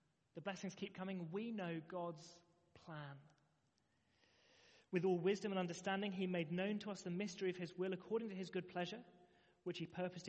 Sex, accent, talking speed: male, British, 180 wpm